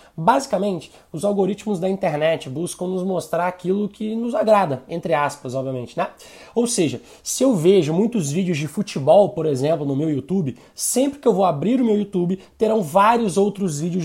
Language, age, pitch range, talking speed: Portuguese, 20-39, 175-215 Hz, 180 wpm